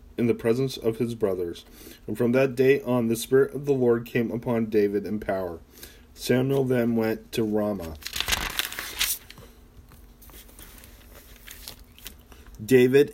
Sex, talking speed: male, 125 wpm